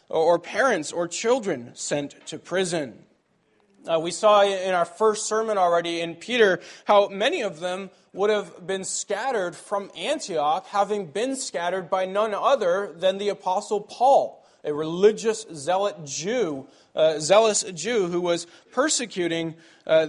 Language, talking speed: English, 145 wpm